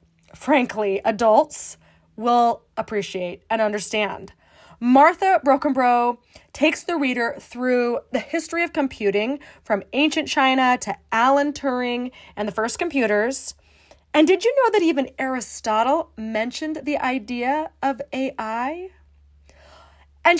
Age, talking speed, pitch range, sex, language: 20-39, 115 wpm, 220-300 Hz, female, English